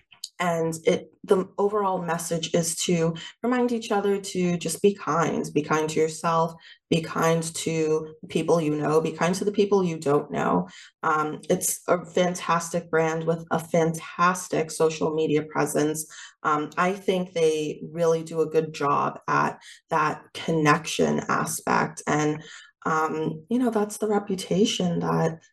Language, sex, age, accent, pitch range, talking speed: English, female, 20-39, American, 155-185 Hz, 150 wpm